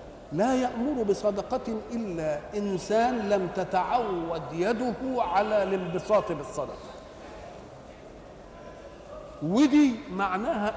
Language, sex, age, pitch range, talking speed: Arabic, male, 50-69, 160-220 Hz, 70 wpm